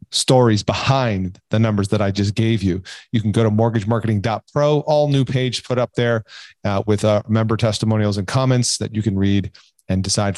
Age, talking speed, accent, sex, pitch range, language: 40-59, 190 wpm, American, male, 105-130 Hz, English